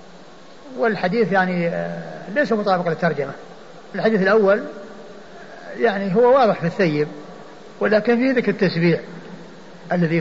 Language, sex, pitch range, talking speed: Arabic, male, 180-215 Hz, 100 wpm